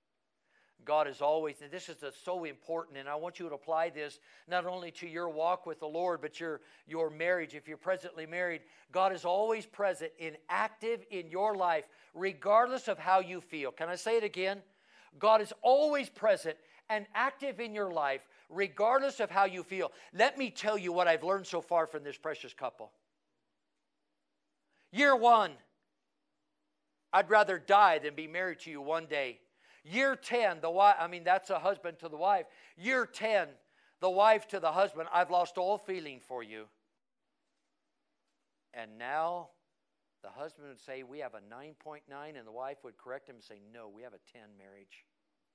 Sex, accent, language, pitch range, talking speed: male, American, English, 145-200 Hz, 180 wpm